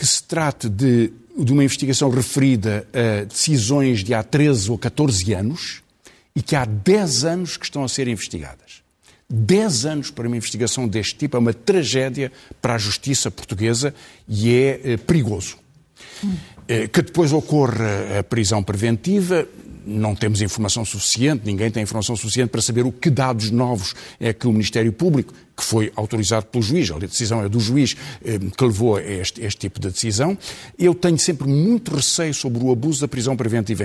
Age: 50-69